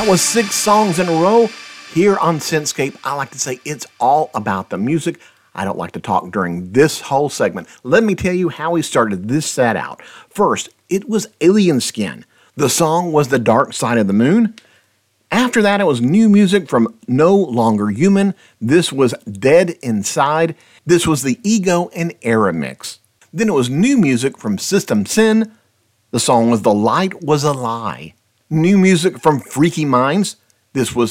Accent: American